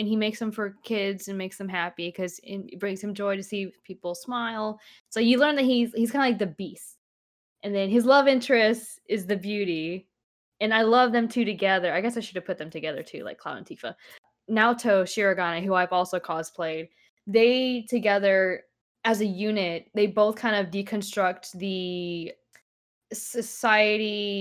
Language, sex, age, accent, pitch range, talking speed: English, female, 10-29, American, 175-220 Hz, 185 wpm